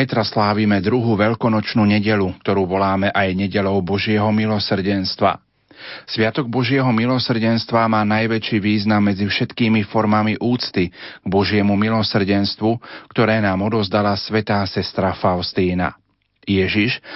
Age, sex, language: 40-59, male, Slovak